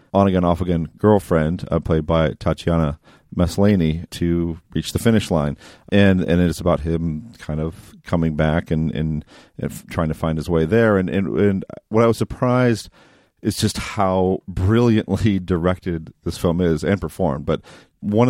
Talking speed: 165 wpm